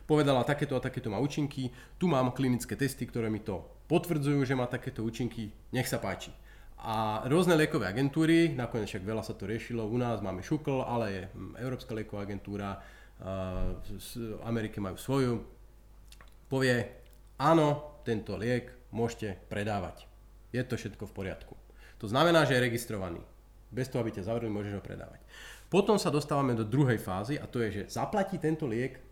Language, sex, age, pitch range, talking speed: Slovak, male, 30-49, 105-140 Hz, 165 wpm